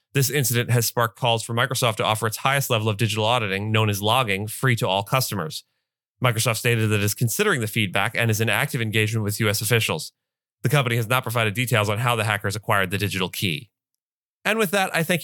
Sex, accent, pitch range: male, American, 110-135 Hz